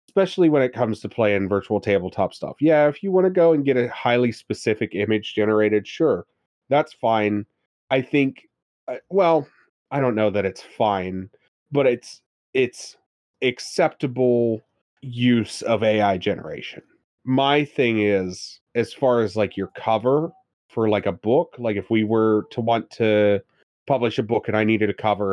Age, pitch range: 30-49, 105-130 Hz